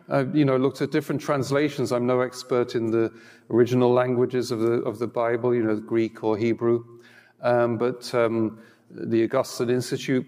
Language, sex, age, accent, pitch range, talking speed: English, male, 40-59, British, 120-140 Hz, 175 wpm